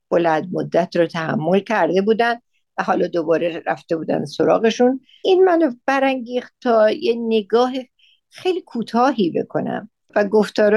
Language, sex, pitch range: Persian, female, 170-225 Hz